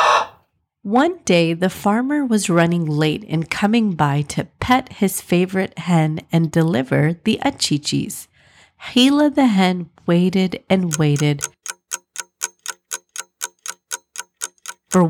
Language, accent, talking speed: English, American, 105 wpm